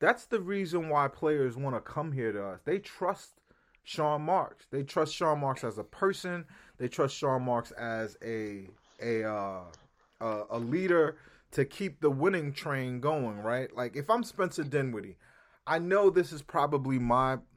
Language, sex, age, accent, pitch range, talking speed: English, male, 30-49, American, 115-150 Hz, 175 wpm